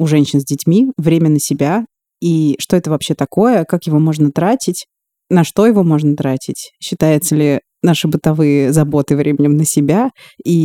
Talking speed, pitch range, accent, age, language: 170 wpm, 145-175 Hz, native, 20-39, Russian